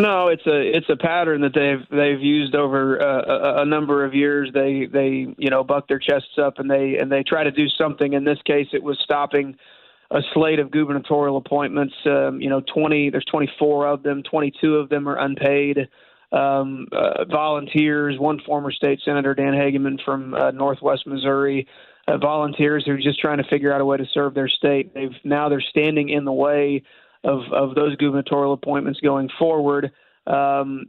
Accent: American